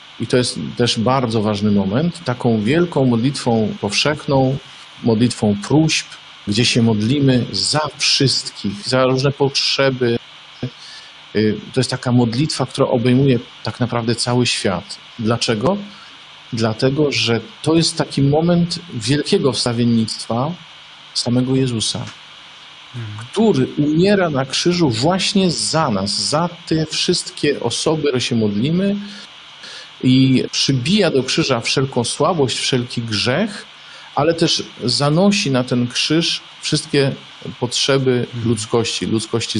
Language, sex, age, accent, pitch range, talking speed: Polish, male, 50-69, native, 110-140 Hz, 110 wpm